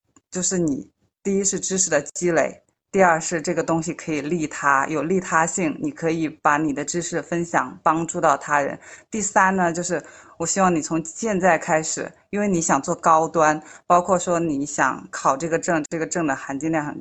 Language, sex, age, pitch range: Chinese, female, 20-39, 155-185 Hz